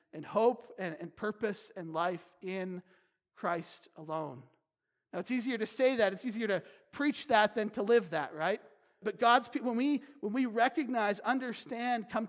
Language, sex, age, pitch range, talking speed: English, male, 40-59, 175-230 Hz, 175 wpm